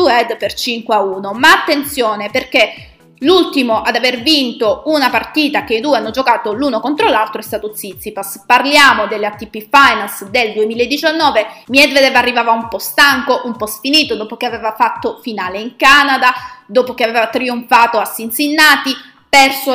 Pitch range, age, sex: 215-275 Hz, 20-39, female